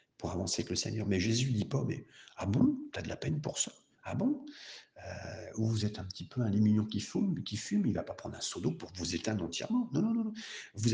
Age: 50-69